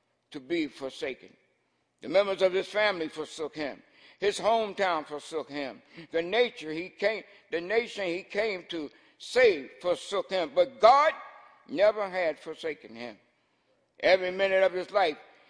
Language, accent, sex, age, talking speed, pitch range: English, American, male, 60-79, 145 wpm, 165-235 Hz